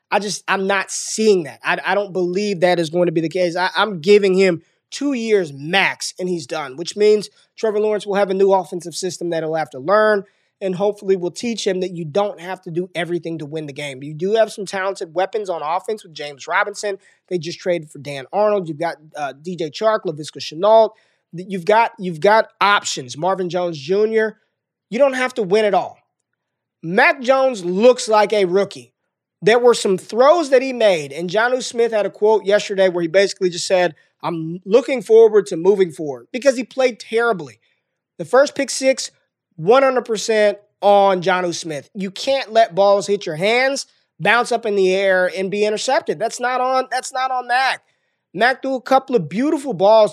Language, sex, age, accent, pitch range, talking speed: English, male, 20-39, American, 175-220 Hz, 200 wpm